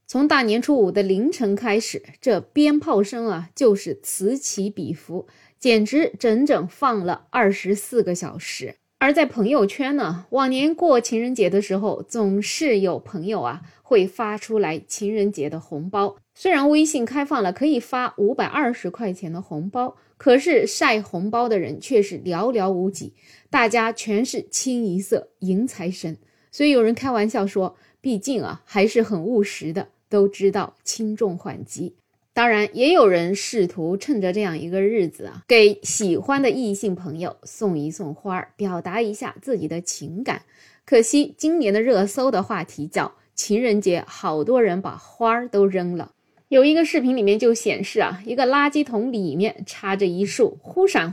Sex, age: female, 20-39